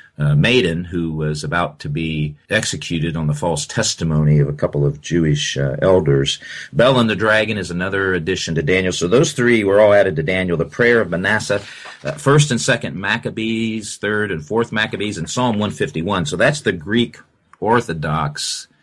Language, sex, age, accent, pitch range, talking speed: English, male, 40-59, American, 75-110 Hz, 180 wpm